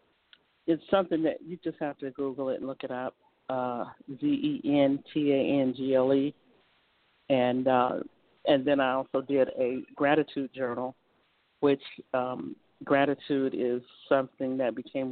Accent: American